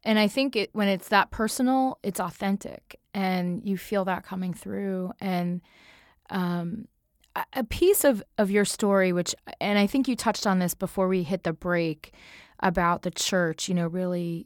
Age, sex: 20-39, female